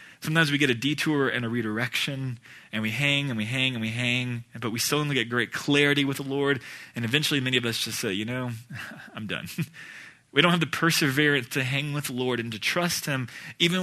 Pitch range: 120-150 Hz